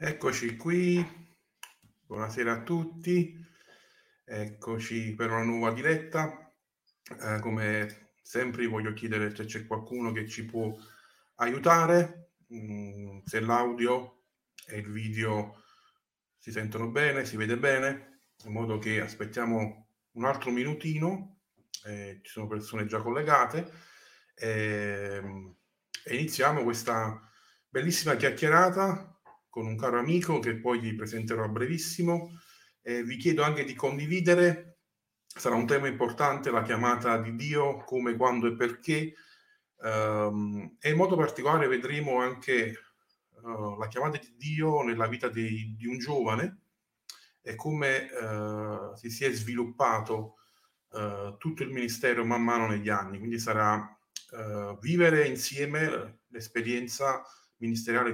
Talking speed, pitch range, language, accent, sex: 115 wpm, 110-150 Hz, Italian, native, male